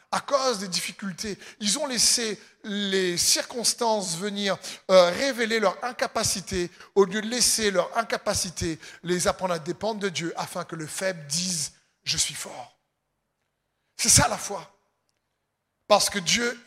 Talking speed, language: 150 wpm, French